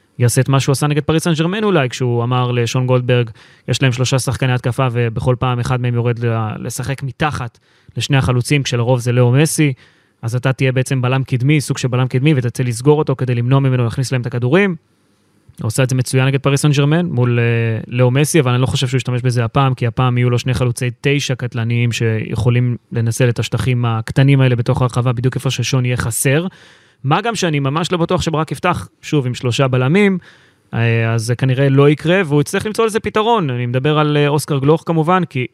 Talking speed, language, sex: 180 wpm, Hebrew, male